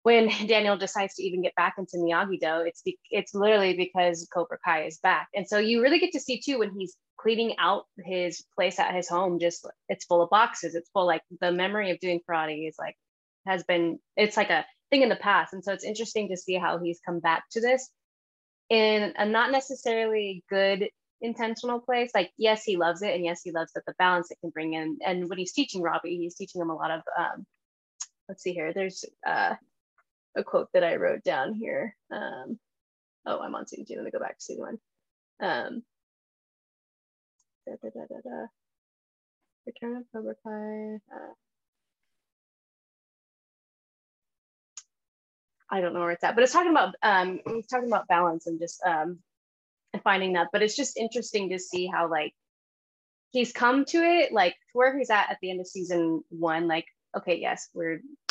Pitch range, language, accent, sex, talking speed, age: 170-230 Hz, English, American, female, 190 wpm, 10-29